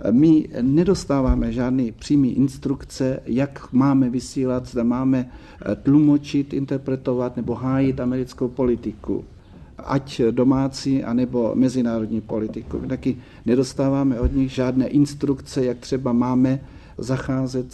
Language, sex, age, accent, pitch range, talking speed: Czech, male, 60-79, native, 125-145 Hz, 110 wpm